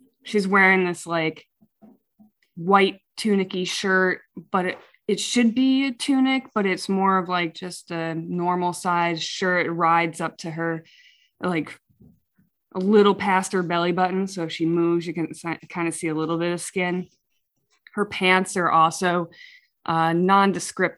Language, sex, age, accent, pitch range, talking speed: English, female, 20-39, American, 165-195 Hz, 160 wpm